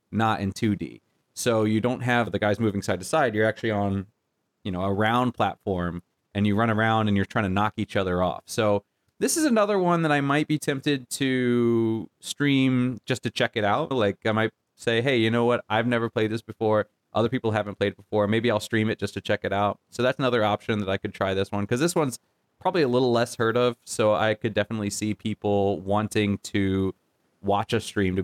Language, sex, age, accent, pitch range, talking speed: English, male, 30-49, American, 100-115 Hz, 230 wpm